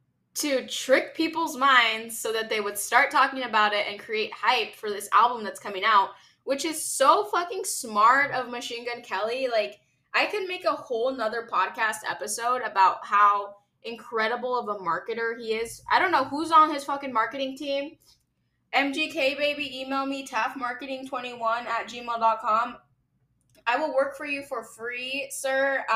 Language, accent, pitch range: English, American, 205-270 Hz